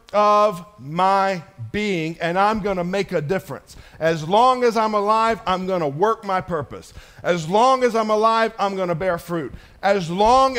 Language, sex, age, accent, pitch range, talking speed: English, male, 50-69, American, 165-220 Hz, 185 wpm